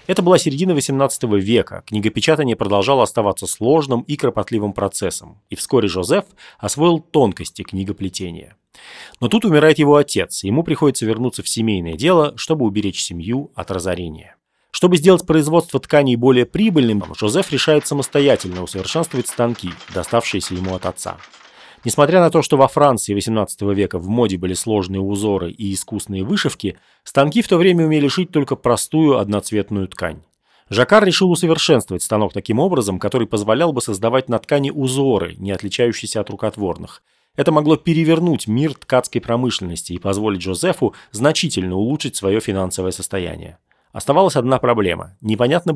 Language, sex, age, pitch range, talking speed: Russian, male, 30-49, 100-145 Hz, 145 wpm